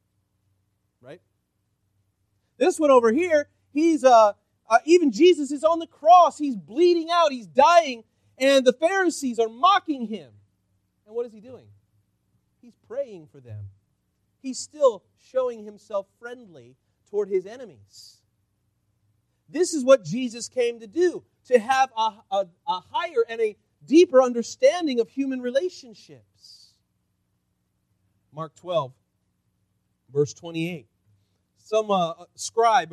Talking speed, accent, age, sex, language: 125 wpm, American, 40-59, male, English